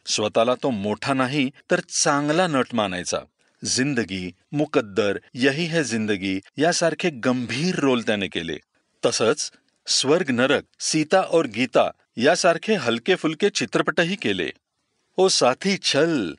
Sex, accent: male, native